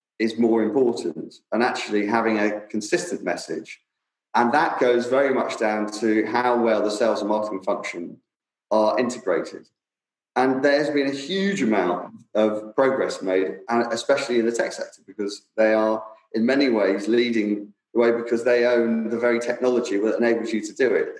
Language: English